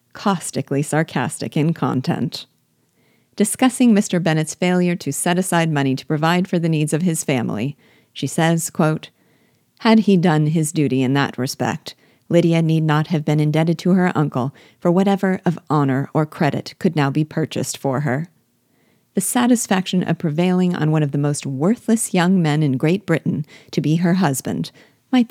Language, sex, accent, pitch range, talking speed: English, female, American, 150-185 Hz, 170 wpm